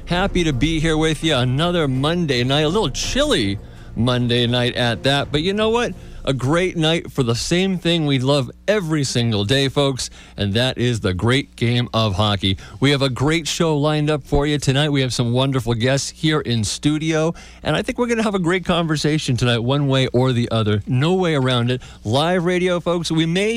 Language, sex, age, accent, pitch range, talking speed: English, male, 50-69, American, 125-170 Hz, 215 wpm